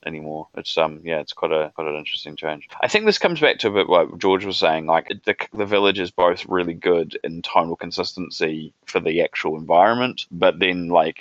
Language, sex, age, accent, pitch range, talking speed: English, male, 20-39, Australian, 80-90 Hz, 220 wpm